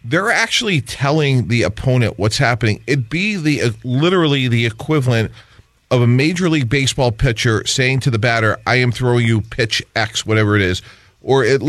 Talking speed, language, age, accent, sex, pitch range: 180 wpm, English, 40-59, American, male, 115-140 Hz